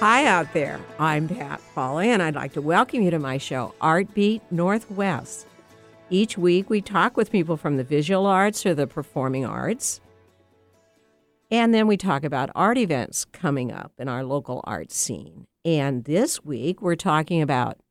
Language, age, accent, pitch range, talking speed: English, 60-79, American, 145-205 Hz, 175 wpm